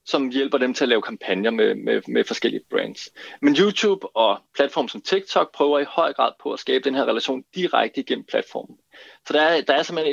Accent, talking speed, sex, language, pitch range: native, 220 wpm, male, Danish, 130-155 Hz